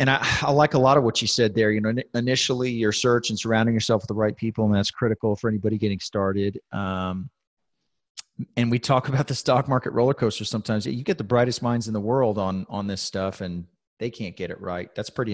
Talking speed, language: 240 wpm, English